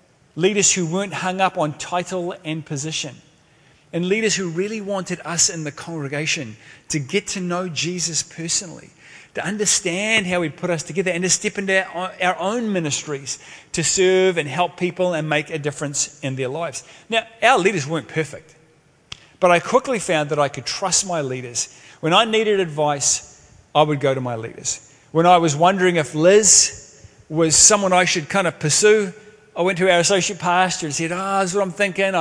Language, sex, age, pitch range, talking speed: English, male, 30-49, 150-190 Hz, 190 wpm